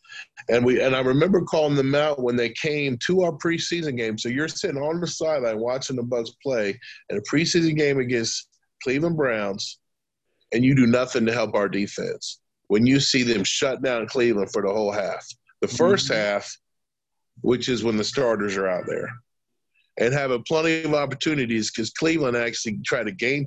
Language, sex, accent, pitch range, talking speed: English, male, American, 105-145 Hz, 185 wpm